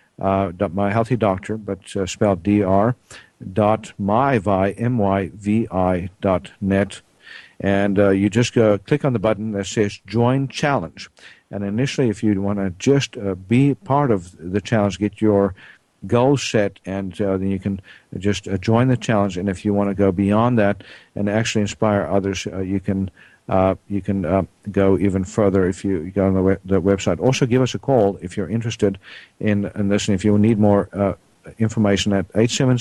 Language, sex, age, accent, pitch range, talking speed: English, male, 50-69, American, 100-120 Hz, 200 wpm